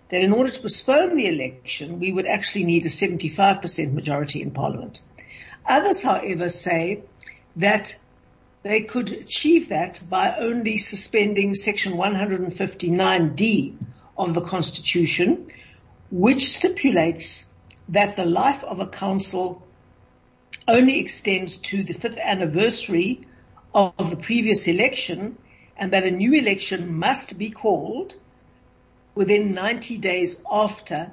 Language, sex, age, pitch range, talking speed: English, female, 60-79, 170-215 Hz, 120 wpm